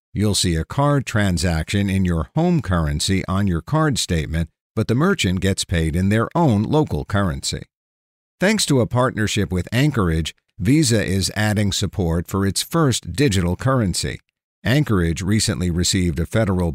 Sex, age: male, 50-69